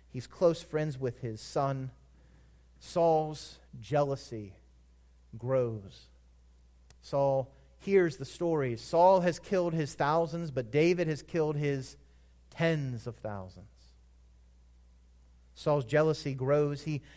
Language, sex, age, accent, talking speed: English, male, 30-49, American, 105 wpm